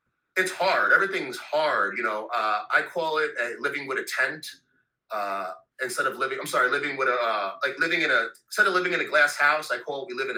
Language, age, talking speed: English, 30-49, 245 wpm